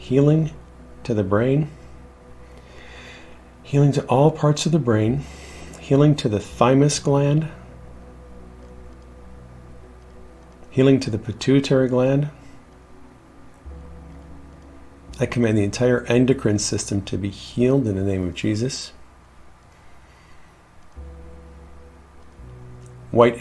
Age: 50-69